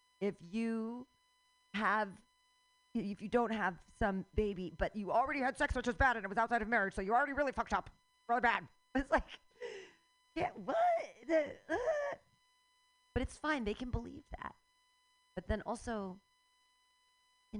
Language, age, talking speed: English, 40-59, 155 wpm